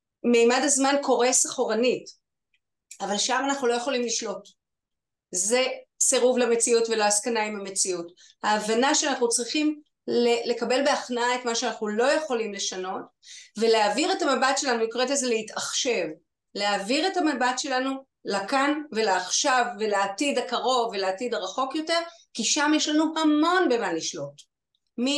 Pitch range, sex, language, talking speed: 230-280 Hz, female, Hebrew, 125 wpm